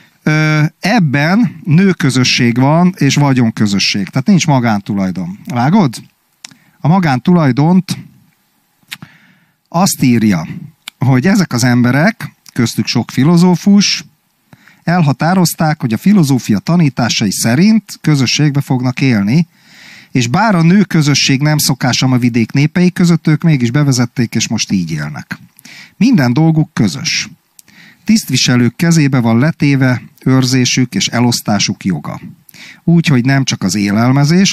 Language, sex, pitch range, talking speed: Hungarian, male, 125-175 Hz, 115 wpm